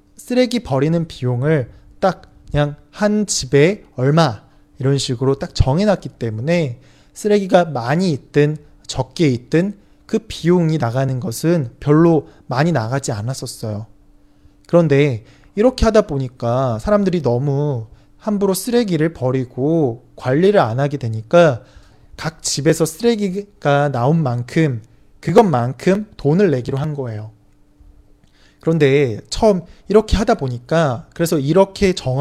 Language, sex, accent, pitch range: Chinese, male, Korean, 130-180 Hz